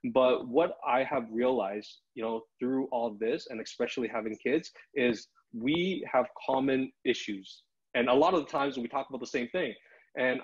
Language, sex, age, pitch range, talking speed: English, male, 20-39, 115-145 Hz, 185 wpm